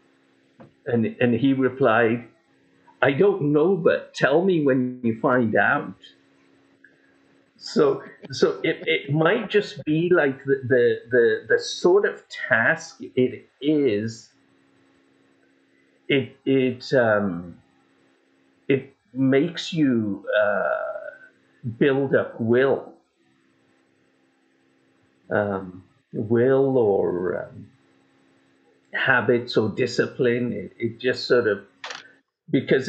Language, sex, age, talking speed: English, male, 50-69, 95 wpm